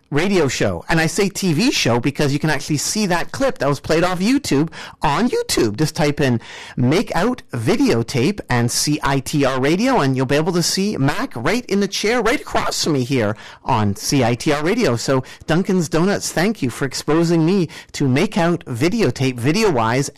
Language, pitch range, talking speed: English, 130-190 Hz, 185 wpm